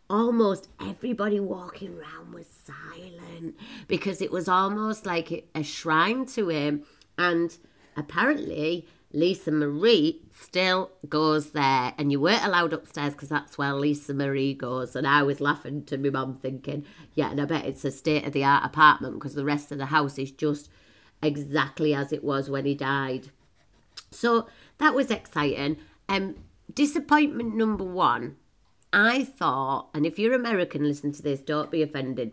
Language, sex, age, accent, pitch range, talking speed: English, female, 30-49, British, 140-195 Hz, 155 wpm